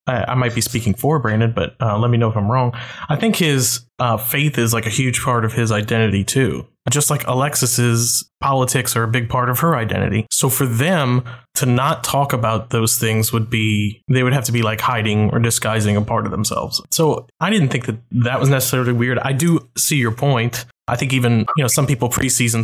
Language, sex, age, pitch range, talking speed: English, male, 20-39, 115-135 Hz, 225 wpm